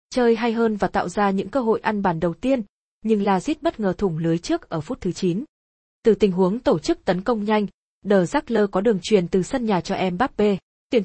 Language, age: Vietnamese, 20-39